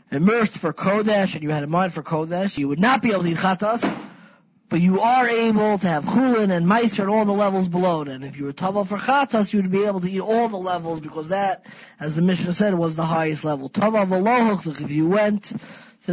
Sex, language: male, English